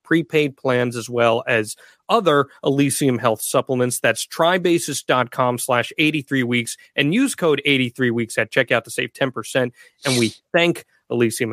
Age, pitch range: 30-49, 130-180 Hz